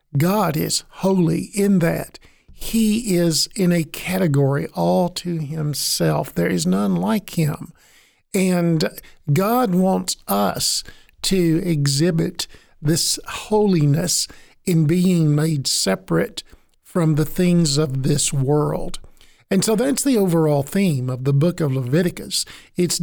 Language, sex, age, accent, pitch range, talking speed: English, male, 50-69, American, 150-190 Hz, 125 wpm